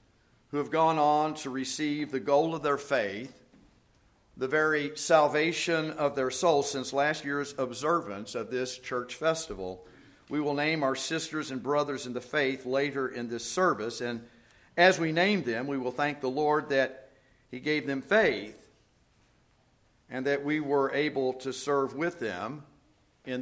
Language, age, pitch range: English, 50-69, 120-150 Hz